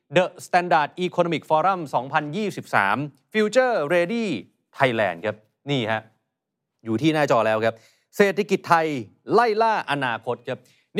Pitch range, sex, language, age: 130-170 Hz, male, Thai, 30-49